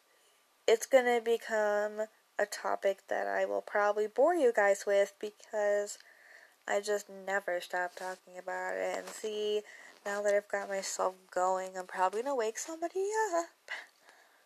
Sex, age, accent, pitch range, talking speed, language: female, 10-29, American, 185-230 Hz, 155 wpm, English